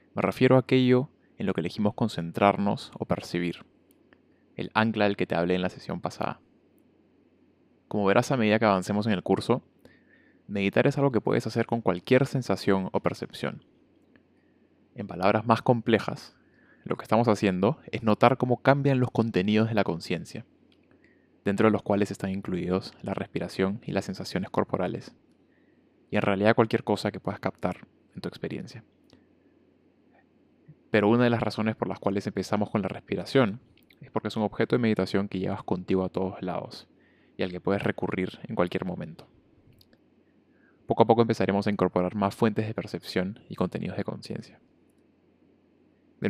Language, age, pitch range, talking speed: Spanish, 20-39, 95-115 Hz, 165 wpm